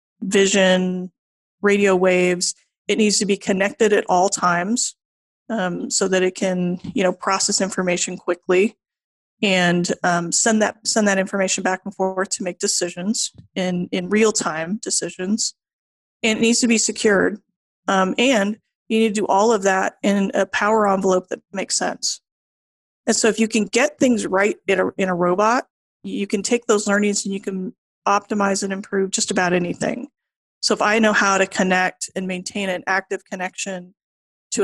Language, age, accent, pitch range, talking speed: English, 30-49, American, 185-215 Hz, 175 wpm